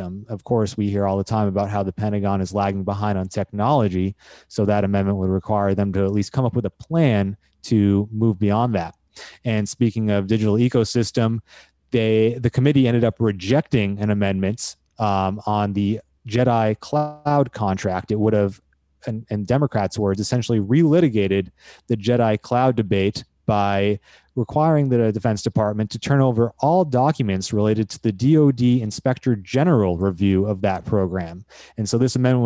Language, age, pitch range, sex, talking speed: English, 20-39, 100-120 Hz, male, 165 wpm